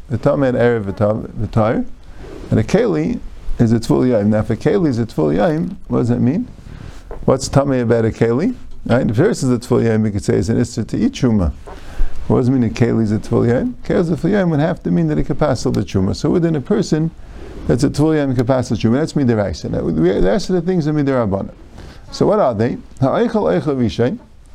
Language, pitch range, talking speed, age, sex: English, 110-155 Hz, 230 wpm, 50-69, male